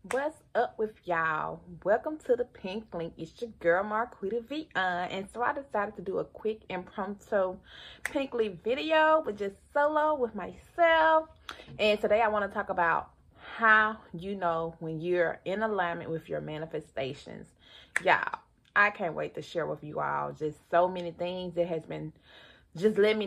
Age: 30-49